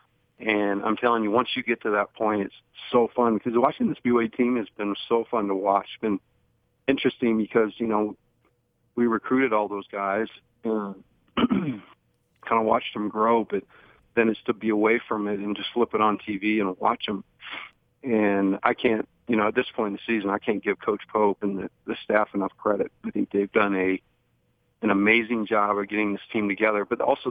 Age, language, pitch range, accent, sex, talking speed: 40-59, English, 100-115 Hz, American, male, 205 wpm